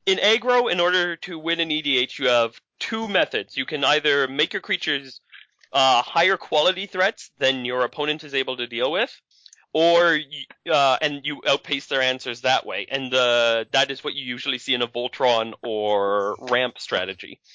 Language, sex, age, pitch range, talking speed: English, male, 20-39, 120-150 Hz, 180 wpm